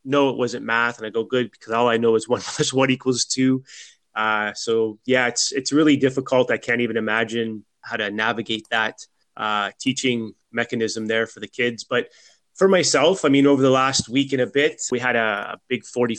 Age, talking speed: 30-49, 215 wpm